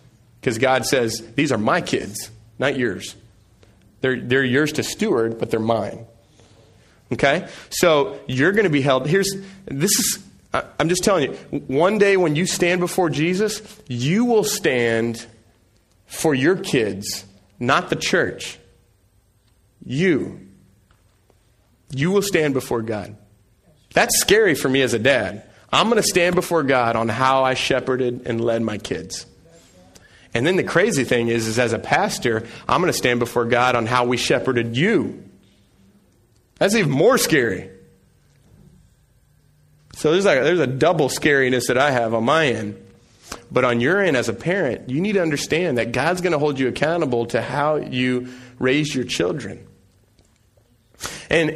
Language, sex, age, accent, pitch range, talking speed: English, male, 30-49, American, 110-150 Hz, 160 wpm